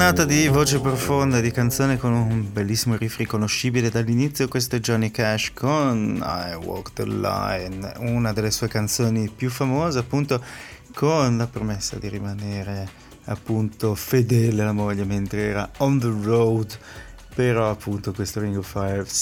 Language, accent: Italian, native